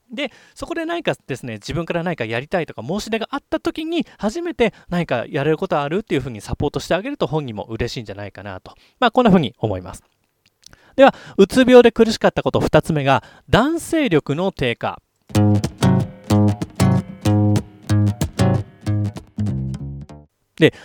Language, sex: Japanese, male